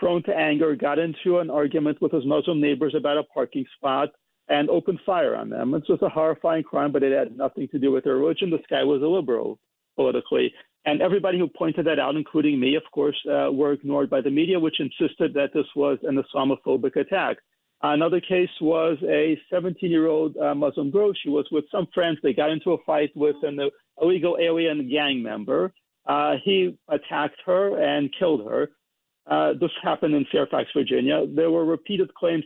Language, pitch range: English, 145-180 Hz